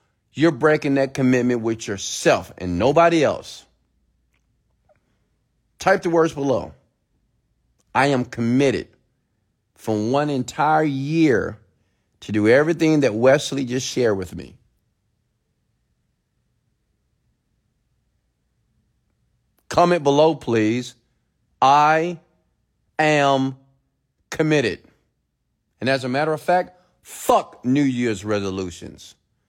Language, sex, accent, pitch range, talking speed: English, male, American, 110-165 Hz, 90 wpm